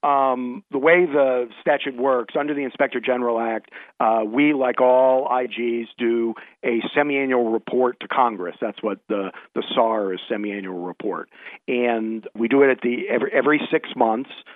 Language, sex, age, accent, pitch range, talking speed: English, male, 50-69, American, 110-125 Hz, 165 wpm